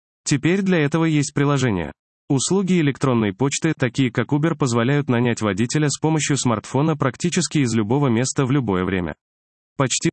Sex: male